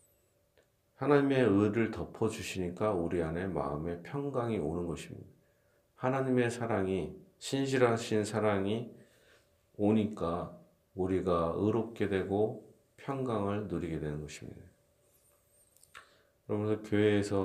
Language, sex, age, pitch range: Korean, male, 40-59, 85-110 Hz